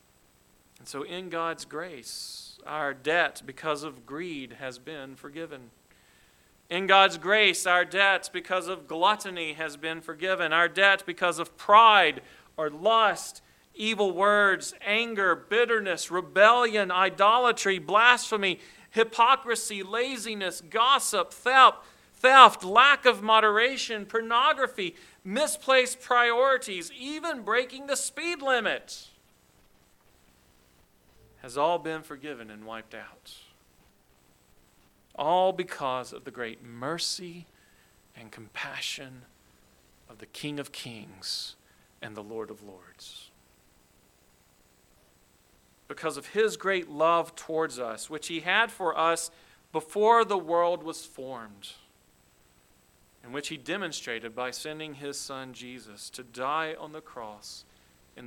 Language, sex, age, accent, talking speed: English, male, 40-59, American, 110 wpm